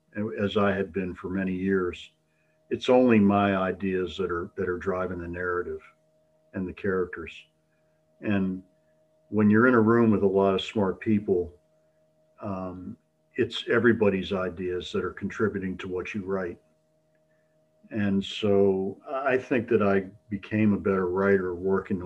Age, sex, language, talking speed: 50-69, male, English, 150 wpm